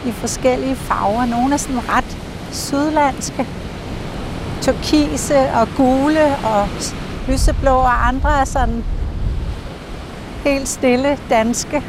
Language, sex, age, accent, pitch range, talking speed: Danish, female, 60-79, native, 220-270 Hz, 100 wpm